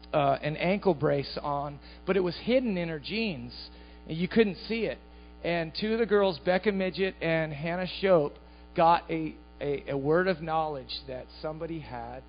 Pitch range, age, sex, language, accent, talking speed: 150-200 Hz, 40-59, male, English, American, 180 wpm